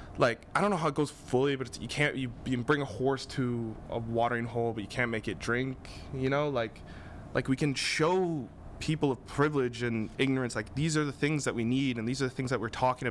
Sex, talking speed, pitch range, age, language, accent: male, 245 wpm, 115-145 Hz, 20-39, English, American